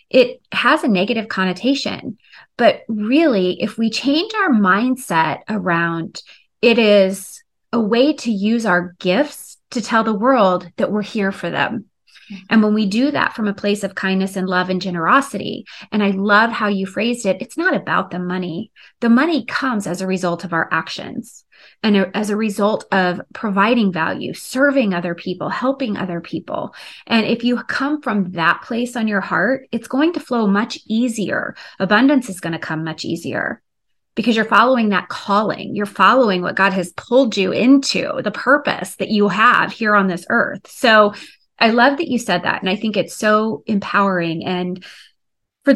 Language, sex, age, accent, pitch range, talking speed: English, female, 20-39, American, 190-245 Hz, 180 wpm